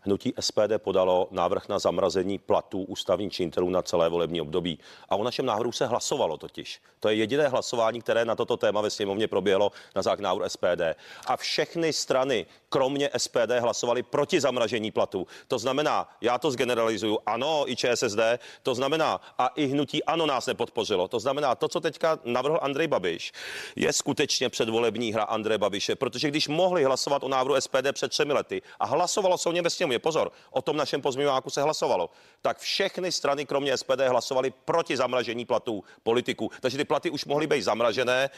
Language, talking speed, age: Czech, 175 wpm, 40-59